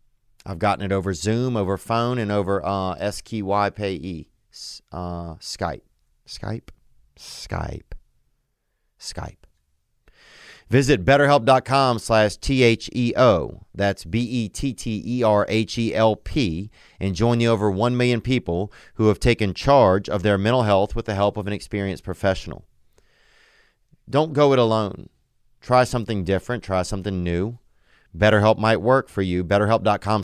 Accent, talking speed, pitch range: American, 115 wpm, 95-125 Hz